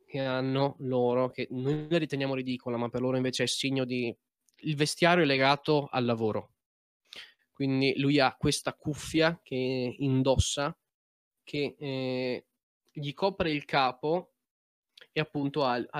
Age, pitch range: 20-39, 120-145 Hz